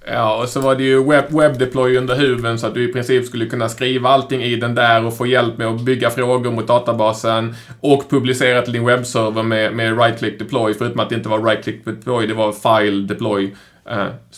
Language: Swedish